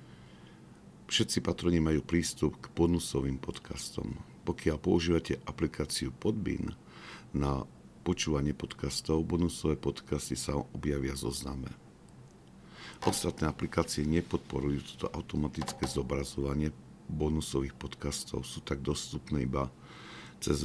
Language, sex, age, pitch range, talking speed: Slovak, male, 50-69, 65-80 Hz, 95 wpm